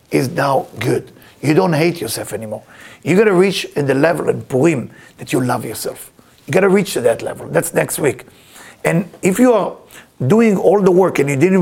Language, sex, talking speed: English, male, 215 wpm